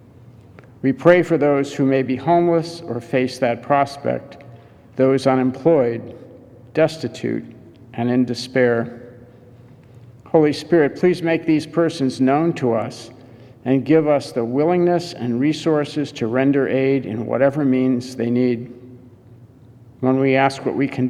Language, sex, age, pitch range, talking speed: English, male, 50-69, 120-145 Hz, 135 wpm